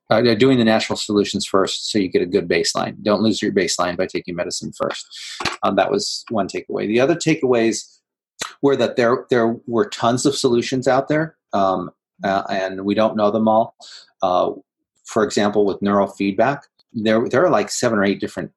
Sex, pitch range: male, 100-115 Hz